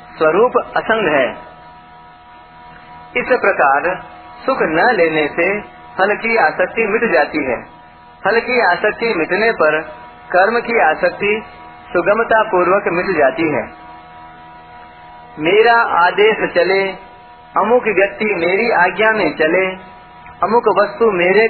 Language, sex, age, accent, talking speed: Hindi, male, 40-59, native, 105 wpm